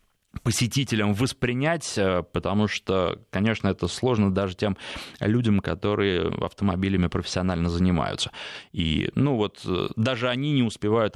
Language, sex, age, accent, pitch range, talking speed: Russian, male, 20-39, native, 100-125 Hz, 115 wpm